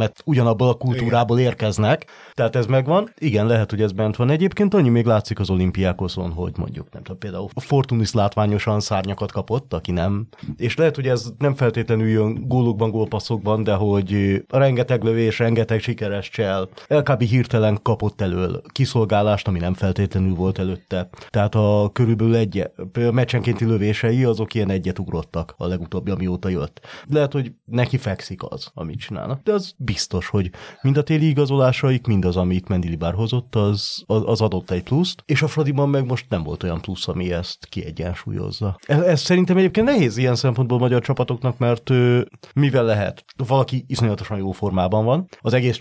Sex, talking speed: male, 165 wpm